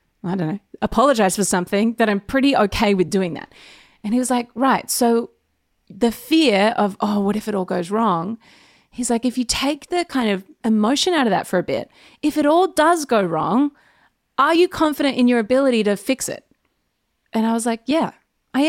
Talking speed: 210 wpm